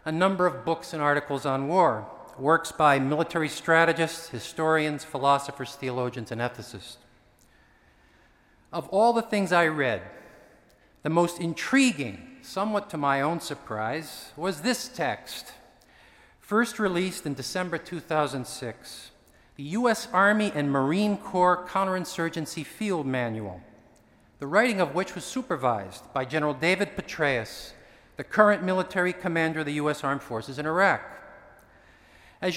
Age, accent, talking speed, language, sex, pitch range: 50-69, American, 130 wpm, English, male, 145-195 Hz